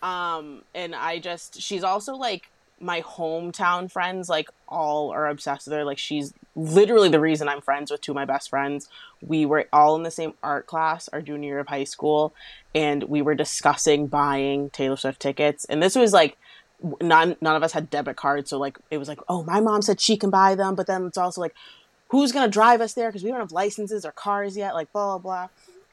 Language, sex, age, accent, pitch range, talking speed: English, female, 20-39, American, 145-190 Hz, 225 wpm